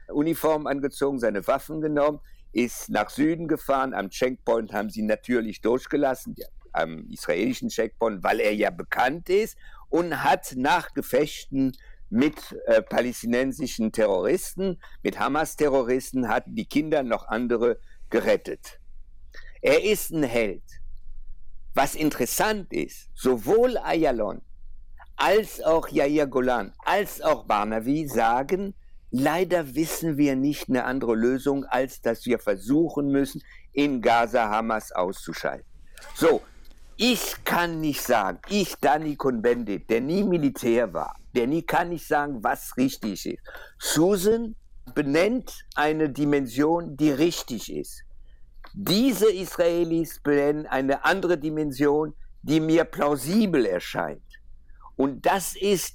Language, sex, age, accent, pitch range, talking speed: German, male, 60-79, German, 130-190 Hz, 120 wpm